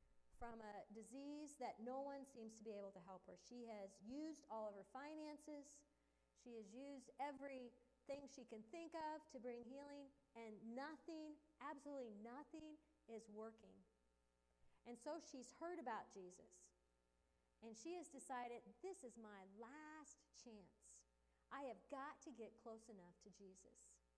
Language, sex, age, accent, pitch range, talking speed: English, female, 40-59, American, 215-300 Hz, 150 wpm